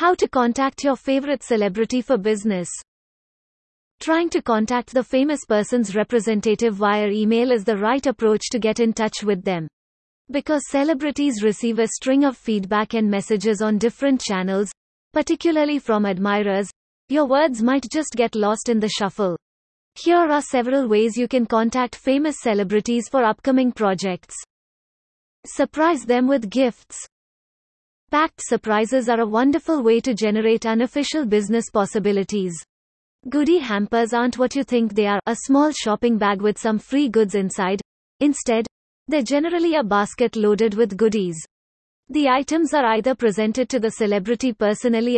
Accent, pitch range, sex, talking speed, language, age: Indian, 215-270 Hz, female, 150 wpm, English, 30-49